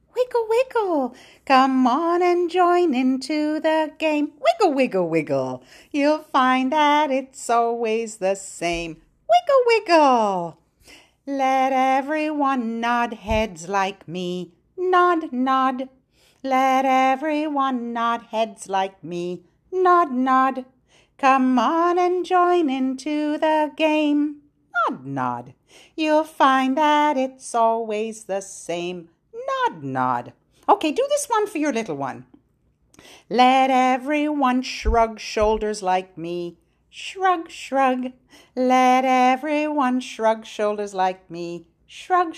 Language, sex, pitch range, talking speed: English, female, 215-300 Hz, 110 wpm